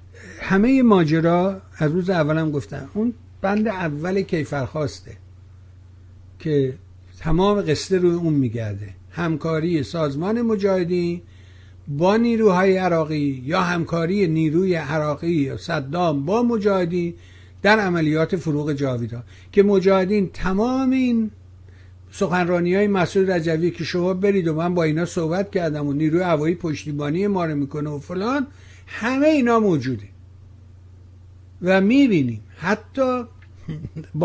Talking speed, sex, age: 115 wpm, male, 60-79